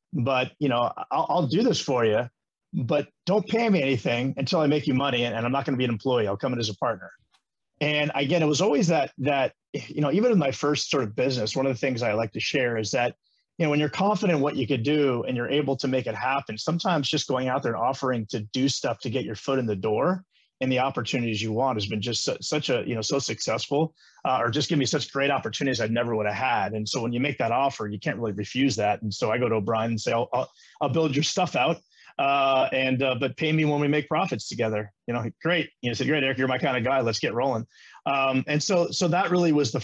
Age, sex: 30-49, male